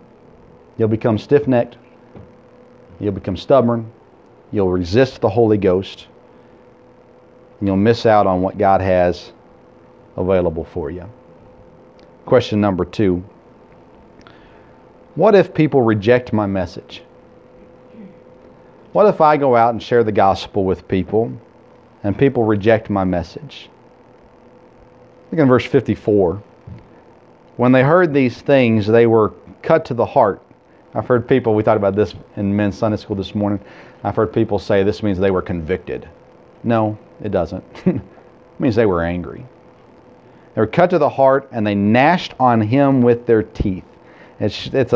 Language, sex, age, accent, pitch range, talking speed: English, male, 40-59, American, 95-120 Hz, 145 wpm